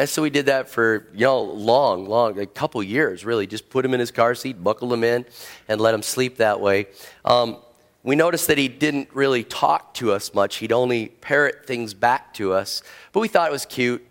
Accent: American